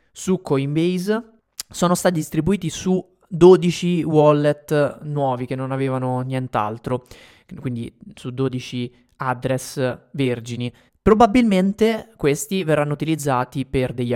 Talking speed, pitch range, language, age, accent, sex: 100 wpm, 125-165 Hz, Italian, 20-39, native, male